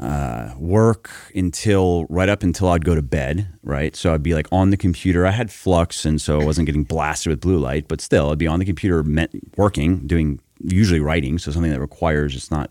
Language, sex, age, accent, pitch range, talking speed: English, male, 30-49, American, 75-90 Hz, 225 wpm